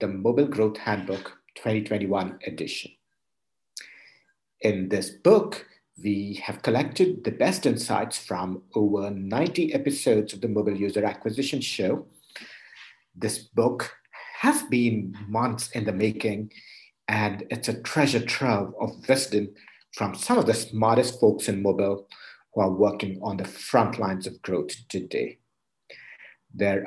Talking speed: 130 wpm